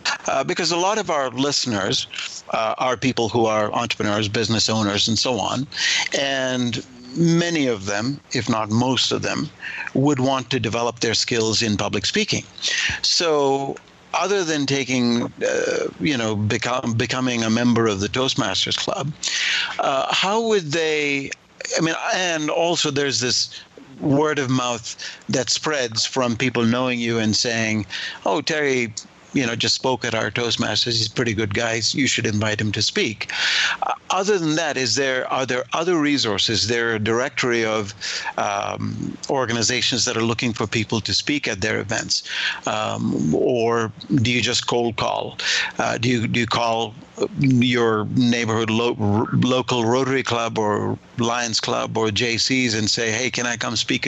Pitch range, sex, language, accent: 110-135 Hz, male, English, American